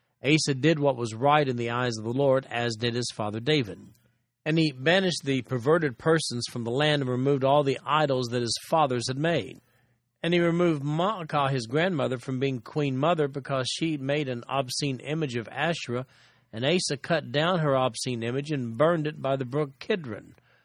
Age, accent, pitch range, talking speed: 40-59, American, 120-150 Hz, 195 wpm